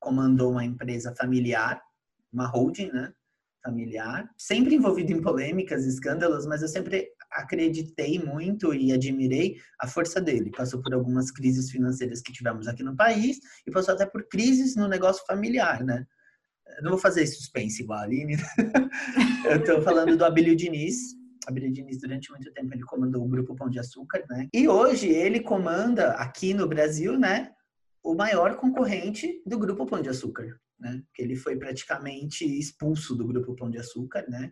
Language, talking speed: Portuguese, 170 wpm